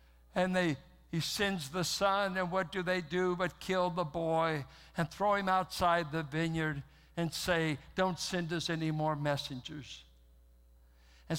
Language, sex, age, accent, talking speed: English, male, 60-79, American, 160 wpm